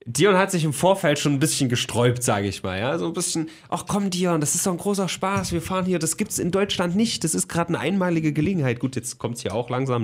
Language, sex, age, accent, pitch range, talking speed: German, male, 30-49, German, 115-165 Hz, 275 wpm